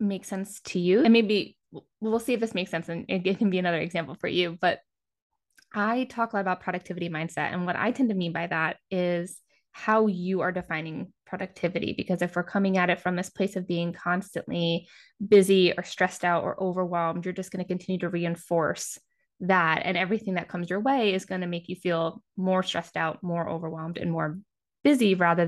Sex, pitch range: female, 175-200 Hz